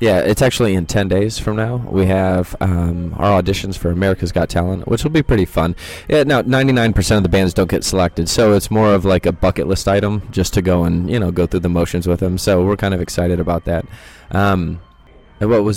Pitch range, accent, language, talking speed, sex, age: 85-105 Hz, American, English, 240 wpm, male, 20-39